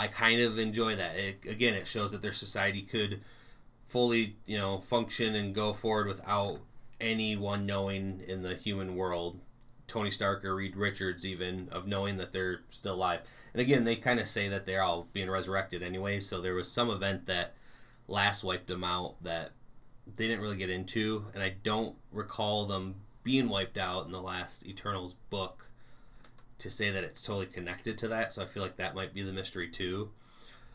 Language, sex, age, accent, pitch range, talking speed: English, male, 30-49, American, 95-120 Hz, 190 wpm